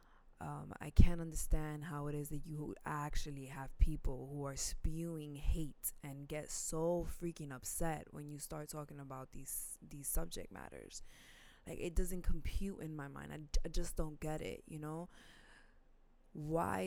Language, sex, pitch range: English, female, 145-165 Hz